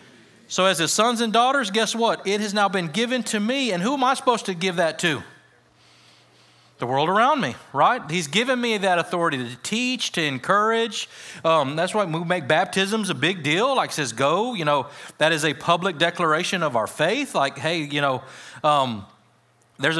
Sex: male